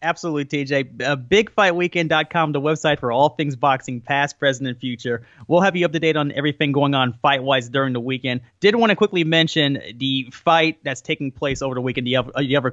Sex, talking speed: male, 210 wpm